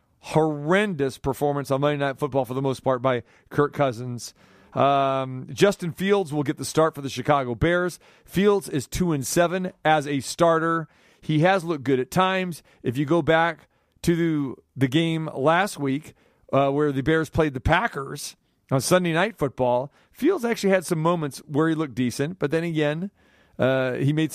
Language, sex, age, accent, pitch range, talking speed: English, male, 40-59, American, 135-160 Hz, 180 wpm